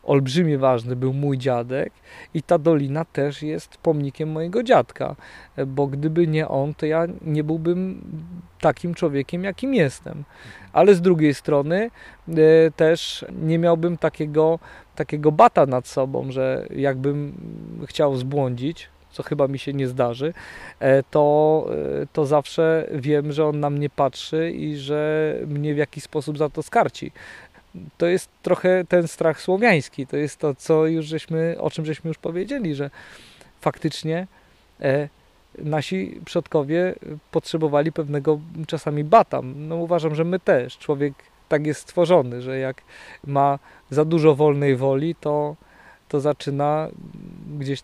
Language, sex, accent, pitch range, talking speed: Polish, male, native, 140-165 Hz, 140 wpm